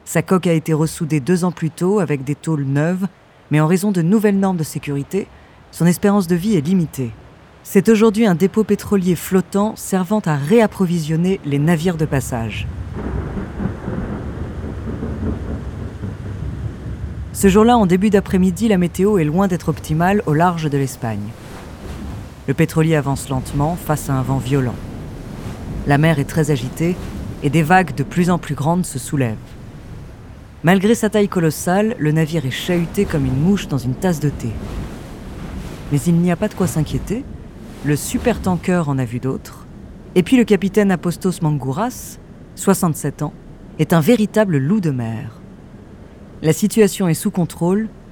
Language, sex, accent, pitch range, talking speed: French, female, French, 140-190 Hz, 160 wpm